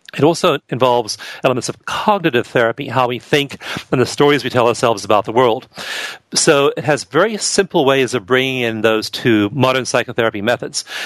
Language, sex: English, male